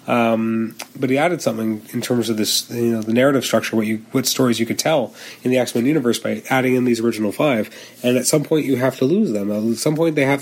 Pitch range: 115-145 Hz